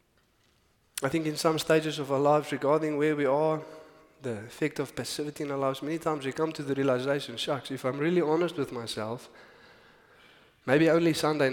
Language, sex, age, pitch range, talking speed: English, male, 20-39, 130-155 Hz, 185 wpm